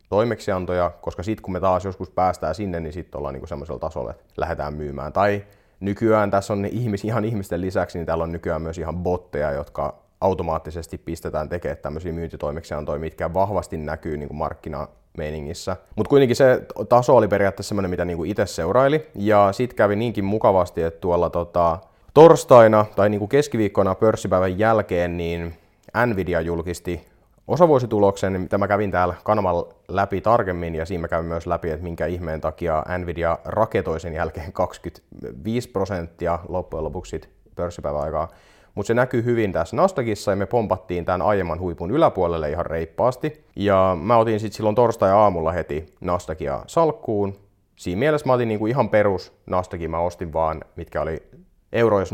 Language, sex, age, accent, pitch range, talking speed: Finnish, male, 30-49, native, 85-105 Hz, 160 wpm